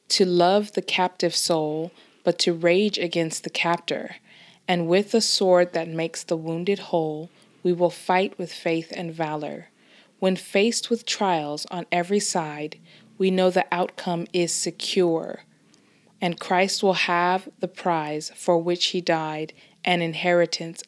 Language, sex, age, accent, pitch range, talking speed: English, female, 20-39, American, 165-195 Hz, 150 wpm